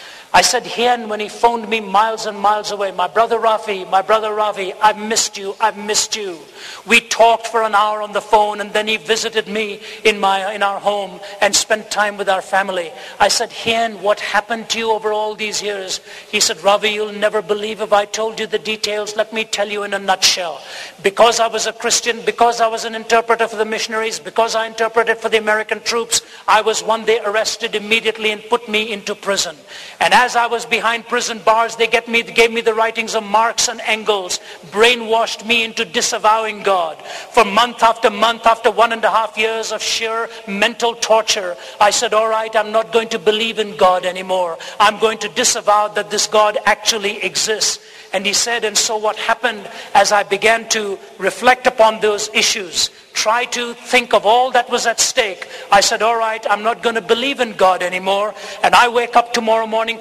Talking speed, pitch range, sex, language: 205 wpm, 205-225 Hz, male, English